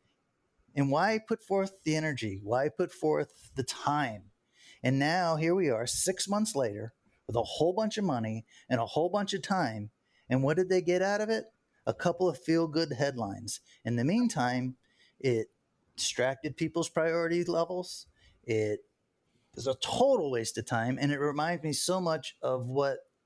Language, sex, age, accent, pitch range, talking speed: English, male, 30-49, American, 120-155 Hz, 175 wpm